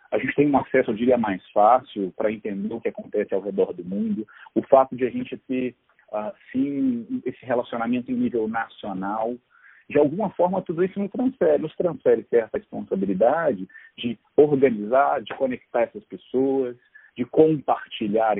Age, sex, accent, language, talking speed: 40-59, male, Brazilian, Portuguese, 160 wpm